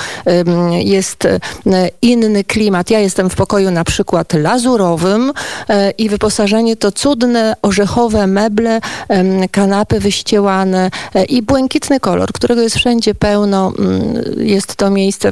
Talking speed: 110 wpm